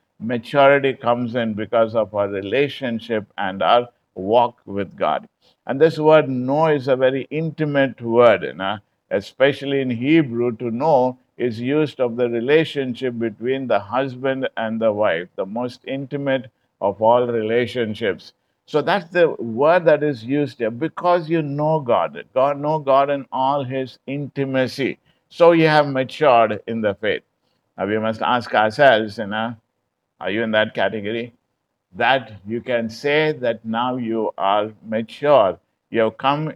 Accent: Indian